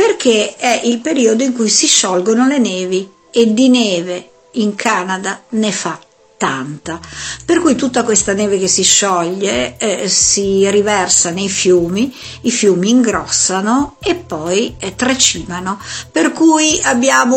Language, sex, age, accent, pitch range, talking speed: Italian, female, 50-69, native, 195-250 Hz, 140 wpm